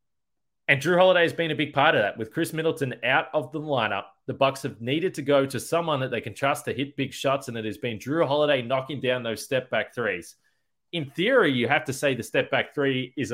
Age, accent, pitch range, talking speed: 20-39, Australian, 125-155 Hz, 245 wpm